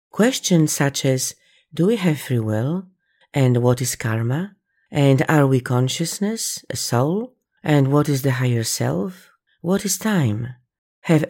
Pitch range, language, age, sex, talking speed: 125-165 Hz, English, 40-59, female, 150 wpm